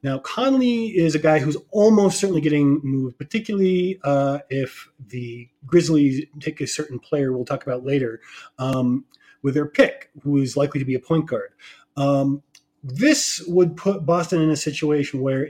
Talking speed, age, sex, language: 170 wpm, 30-49, male, English